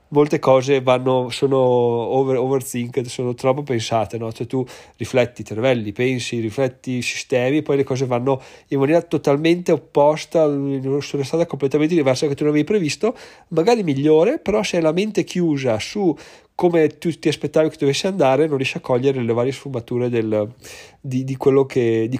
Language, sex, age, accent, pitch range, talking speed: Italian, male, 30-49, native, 125-150 Hz, 175 wpm